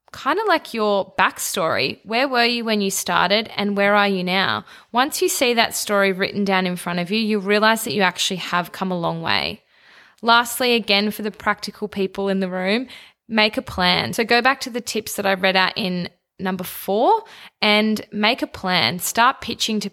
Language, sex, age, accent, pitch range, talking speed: English, female, 20-39, Australian, 190-230 Hz, 210 wpm